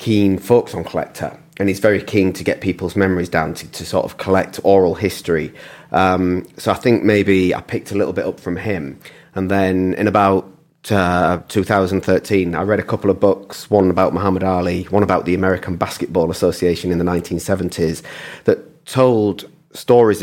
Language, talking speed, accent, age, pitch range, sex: English, 180 wpm, British, 30-49, 90-105 Hz, male